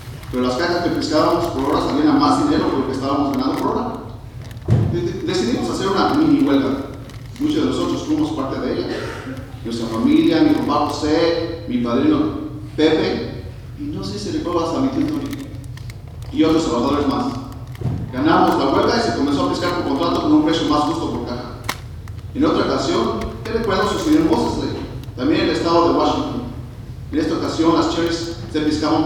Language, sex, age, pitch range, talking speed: English, male, 40-59, 120-170 Hz, 190 wpm